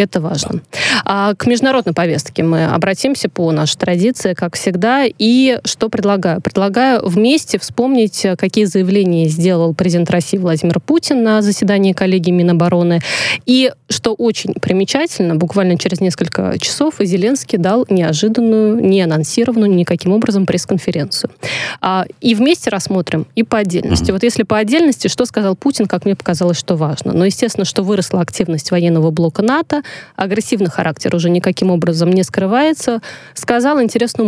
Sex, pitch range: female, 180-230 Hz